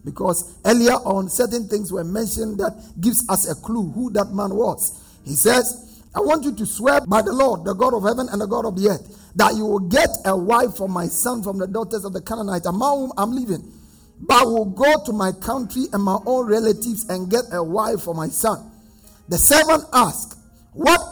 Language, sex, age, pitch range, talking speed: English, male, 50-69, 195-245 Hz, 215 wpm